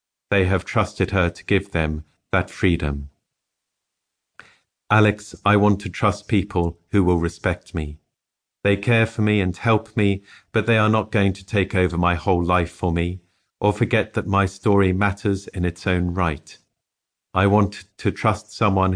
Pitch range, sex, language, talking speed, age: 90-105 Hz, male, English, 170 wpm, 50-69